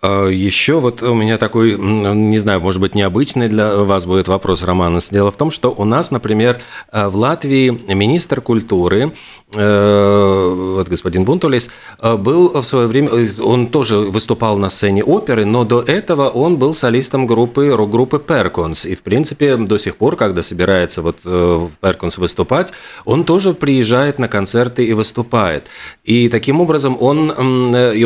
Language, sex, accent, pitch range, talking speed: Russian, male, native, 100-125 Hz, 155 wpm